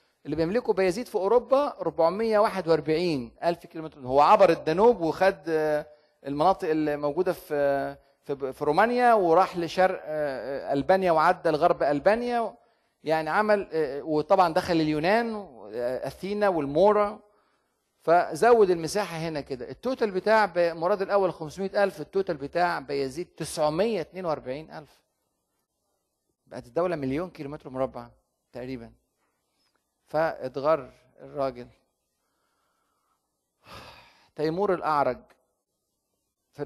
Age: 30-49